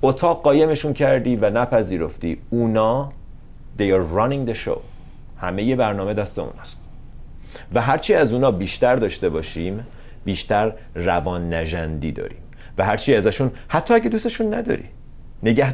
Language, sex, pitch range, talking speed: Persian, male, 90-140 Hz, 135 wpm